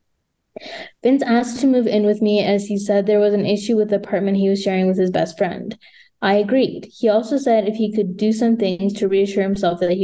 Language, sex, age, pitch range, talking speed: English, female, 20-39, 185-220 Hz, 240 wpm